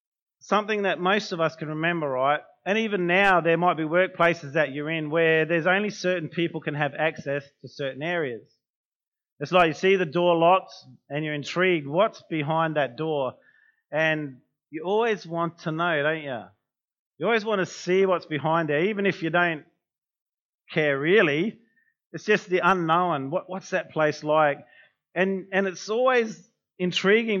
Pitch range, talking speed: 155-190 Hz, 170 wpm